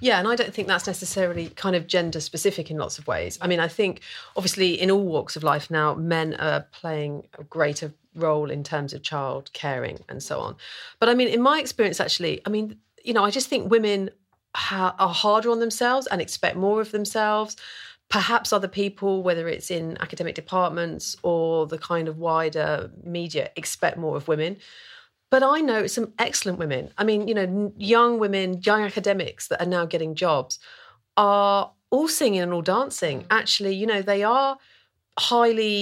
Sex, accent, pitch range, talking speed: female, British, 170-220 Hz, 190 wpm